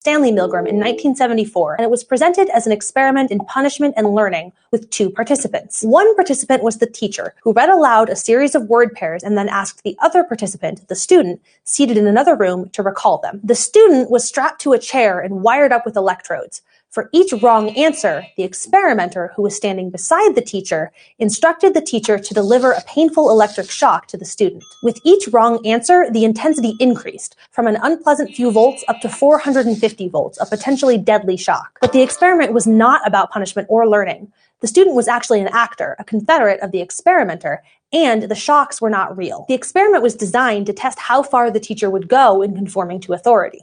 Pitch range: 205-275 Hz